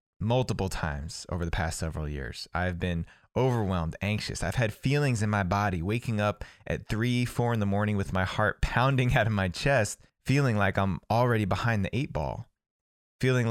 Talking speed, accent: 185 wpm, American